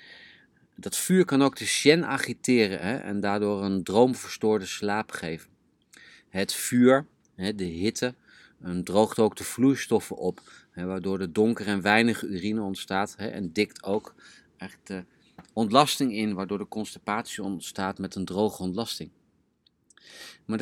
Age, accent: 30-49, Dutch